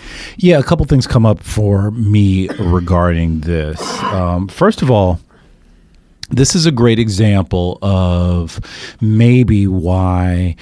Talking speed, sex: 125 wpm, male